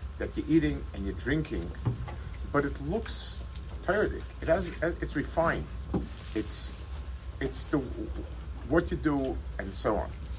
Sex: male